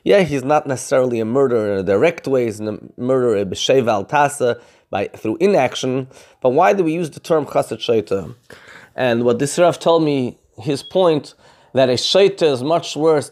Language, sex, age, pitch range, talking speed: English, male, 20-39, 130-165 Hz, 180 wpm